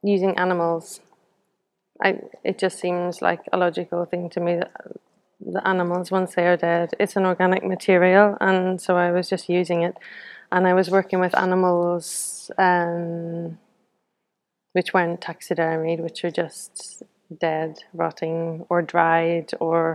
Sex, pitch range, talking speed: female, 170-185 Hz, 145 wpm